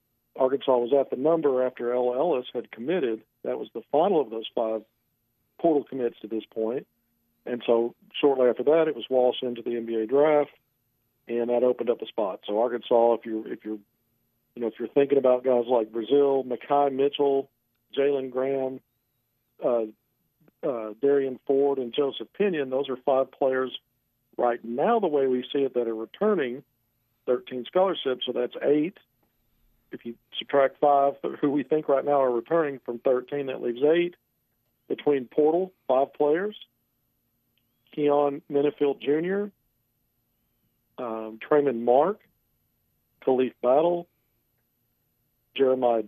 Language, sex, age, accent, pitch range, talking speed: English, male, 50-69, American, 120-140 Hz, 140 wpm